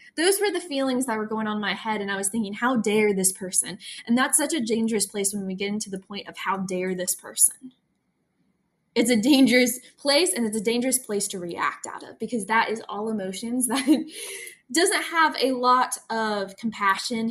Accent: American